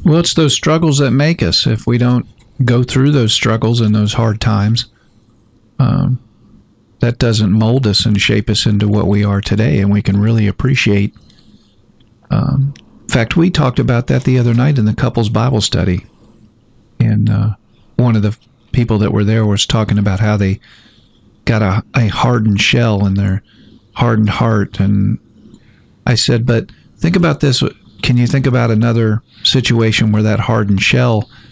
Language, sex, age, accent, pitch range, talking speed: English, male, 50-69, American, 105-120 Hz, 175 wpm